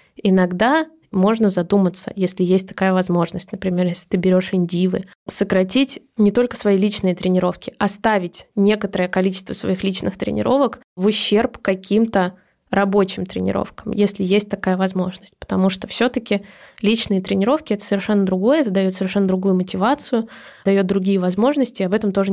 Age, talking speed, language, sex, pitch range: 20-39, 145 wpm, Russian, female, 190-225 Hz